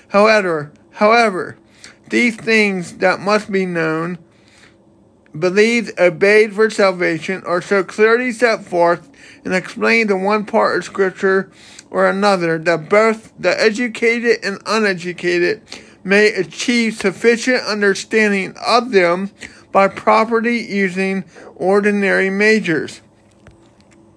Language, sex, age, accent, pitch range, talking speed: English, male, 50-69, American, 180-215 Hz, 105 wpm